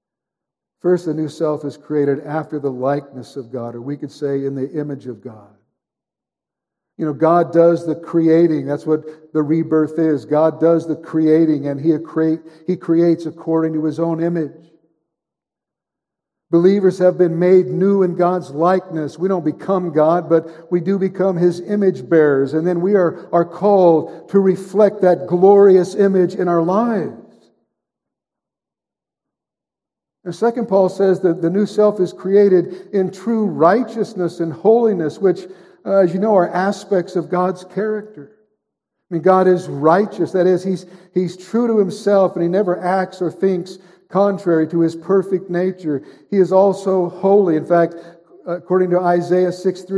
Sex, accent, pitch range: male, American, 160-190 Hz